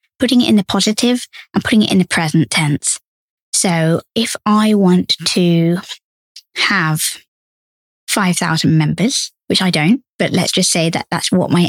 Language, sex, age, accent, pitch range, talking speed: English, female, 20-39, British, 170-220 Hz, 160 wpm